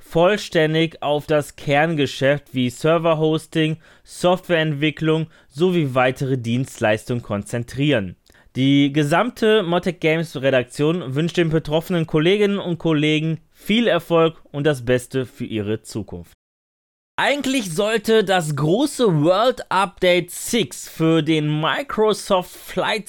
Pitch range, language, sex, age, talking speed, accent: 150-195 Hz, German, male, 20-39, 105 wpm, German